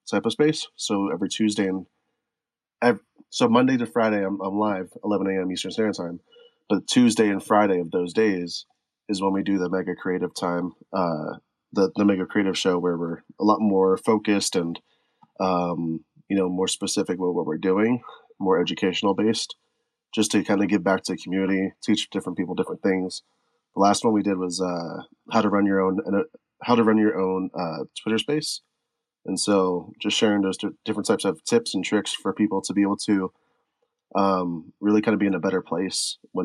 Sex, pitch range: male, 95-105 Hz